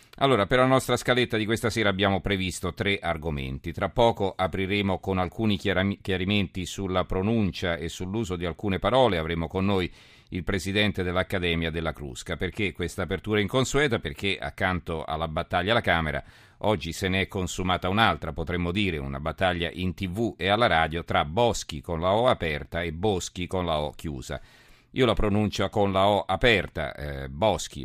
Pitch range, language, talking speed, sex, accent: 85-100 Hz, Italian, 170 wpm, male, native